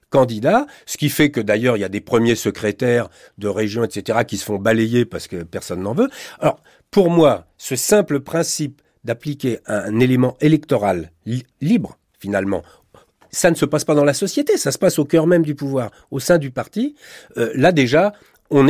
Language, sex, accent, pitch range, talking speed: French, male, French, 105-155 Hz, 195 wpm